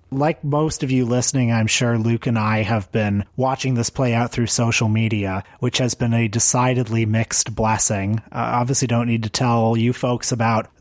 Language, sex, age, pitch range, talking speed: English, male, 30-49, 110-130 Hz, 195 wpm